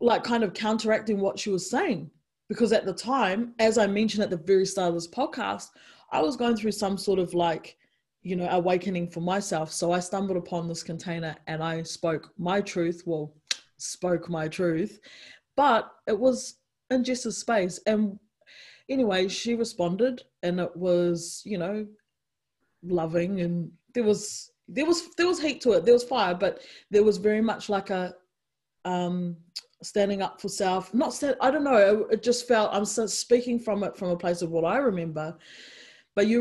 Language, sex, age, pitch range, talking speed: English, female, 20-39, 175-220 Hz, 185 wpm